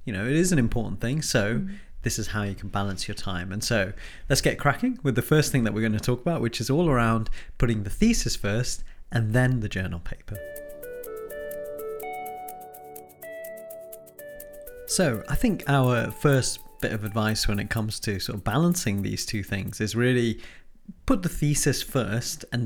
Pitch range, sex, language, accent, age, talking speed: 105-135 Hz, male, English, British, 30-49, 180 wpm